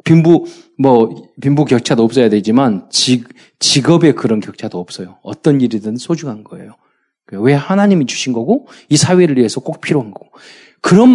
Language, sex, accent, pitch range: Korean, male, native, 110-180 Hz